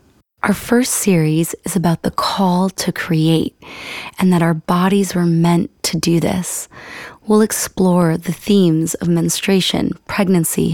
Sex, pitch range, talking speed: female, 170-200 Hz, 140 wpm